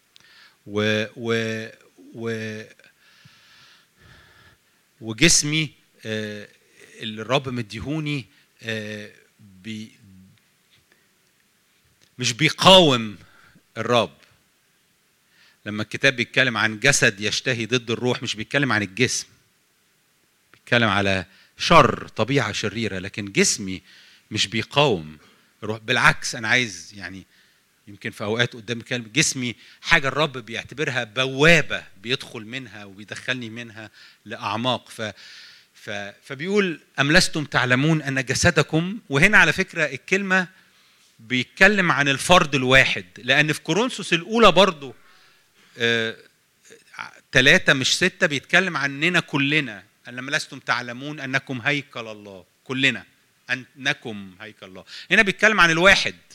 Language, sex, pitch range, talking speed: English, male, 110-150 Hz, 95 wpm